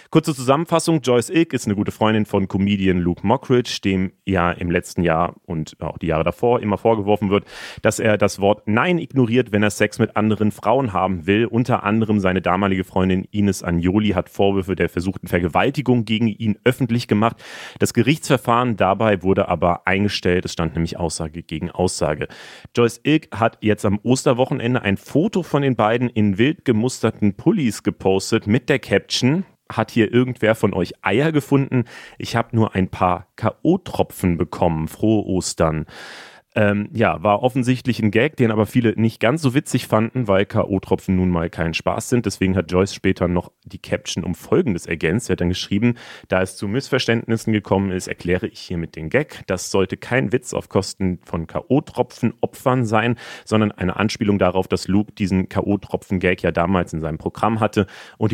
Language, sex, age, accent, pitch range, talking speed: German, male, 30-49, German, 95-120 Hz, 180 wpm